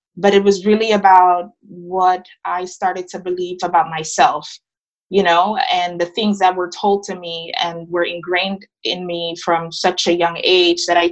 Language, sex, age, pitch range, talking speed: English, female, 20-39, 175-200 Hz, 185 wpm